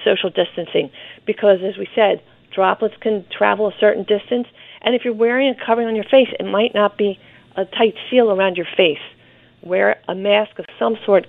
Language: English